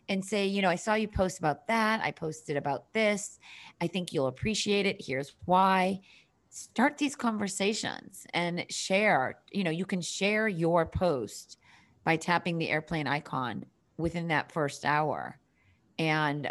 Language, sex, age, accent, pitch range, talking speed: English, female, 40-59, American, 150-190 Hz, 155 wpm